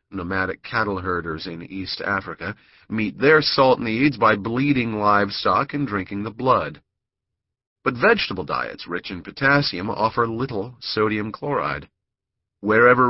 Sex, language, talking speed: male, English, 130 wpm